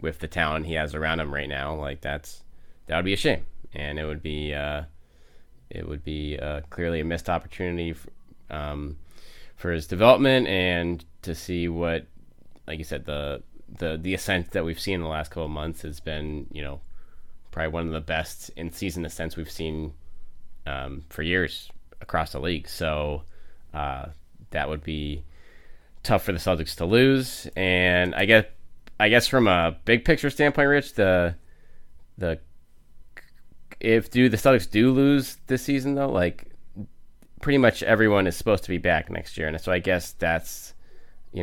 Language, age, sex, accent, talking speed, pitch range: English, 20-39, male, American, 180 wpm, 75-90 Hz